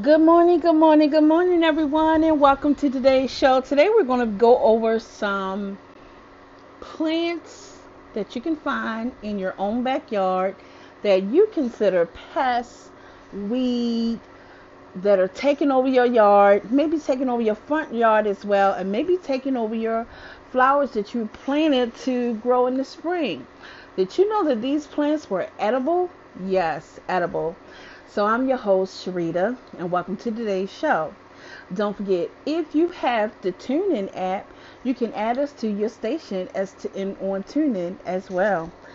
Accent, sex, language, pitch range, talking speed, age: American, female, English, 195-285 Hz, 160 wpm, 40-59